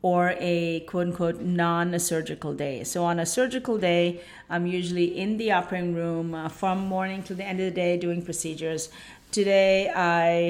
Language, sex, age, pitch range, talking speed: English, female, 40-59, 165-185 Hz, 165 wpm